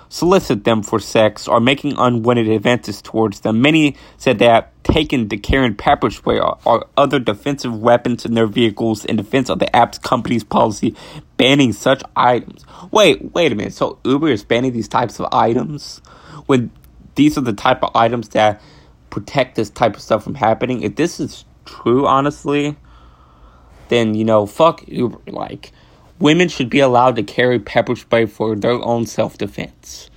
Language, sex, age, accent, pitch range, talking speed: English, male, 20-39, American, 105-125 Hz, 170 wpm